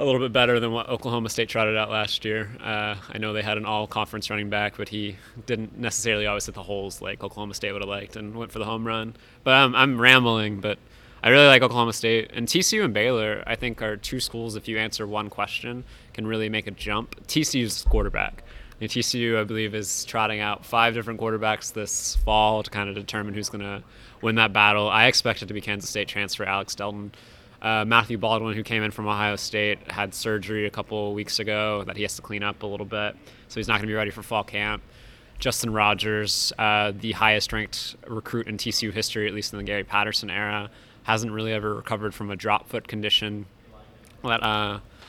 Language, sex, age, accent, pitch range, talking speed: English, male, 20-39, American, 105-115 Hz, 220 wpm